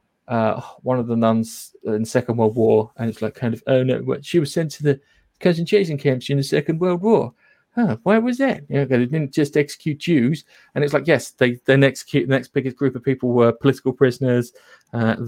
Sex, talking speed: male, 220 wpm